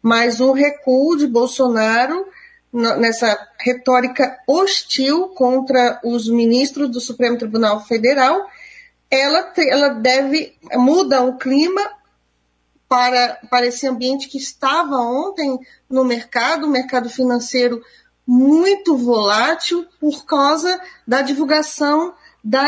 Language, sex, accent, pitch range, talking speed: Portuguese, female, Brazilian, 245-290 Hz, 105 wpm